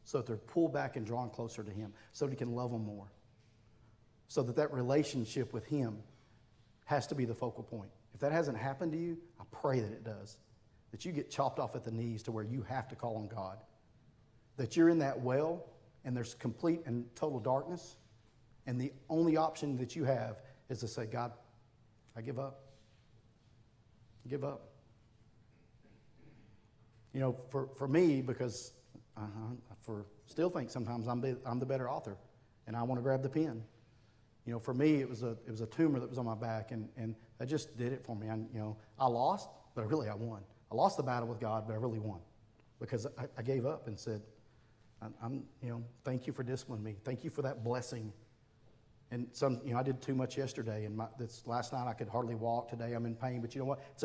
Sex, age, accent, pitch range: male, 40-59, American, 110-130 Hz